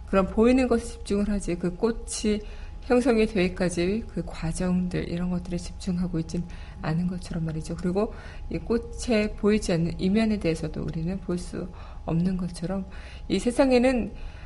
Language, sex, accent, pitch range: Korean, female, native, 170-215 Hz